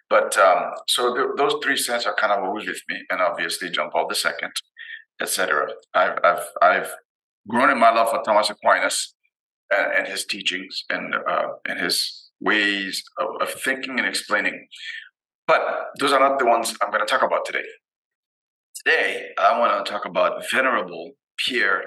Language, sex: English, male